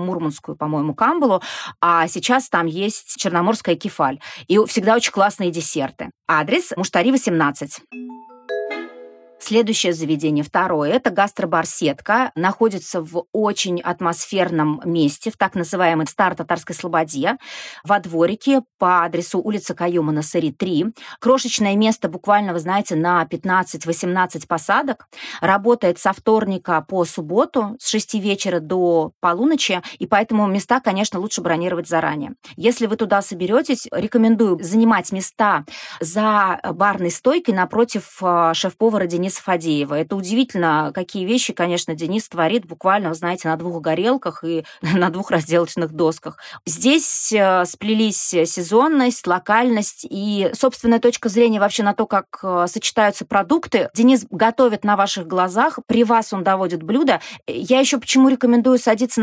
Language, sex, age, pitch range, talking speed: Russian, female, 30-49, 175-230 Hz, 130 wpm